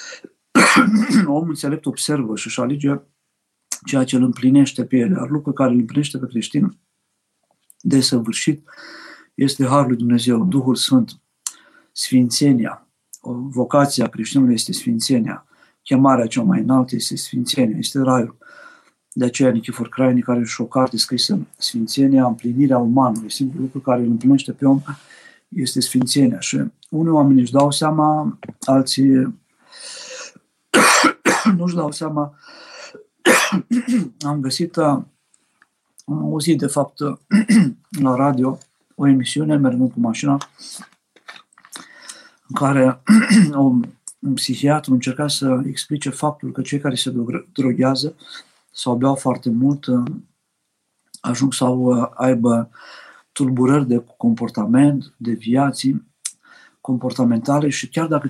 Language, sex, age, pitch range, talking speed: Romanian, male, 50-69, 125-150 Hz, 115 wpm